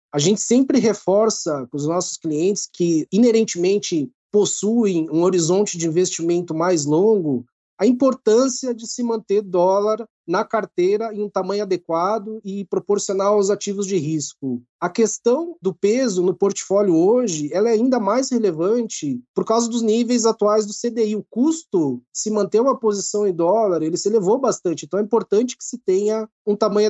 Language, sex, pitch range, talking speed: Portuguese, male, 170-225 Hz, 165 wpm